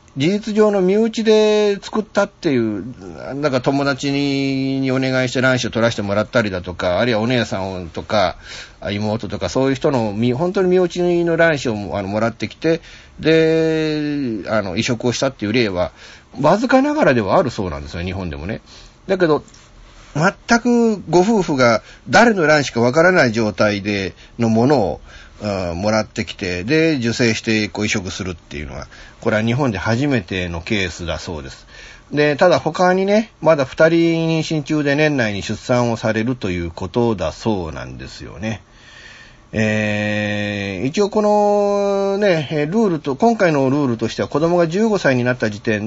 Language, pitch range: Japanese, 105-165 Hz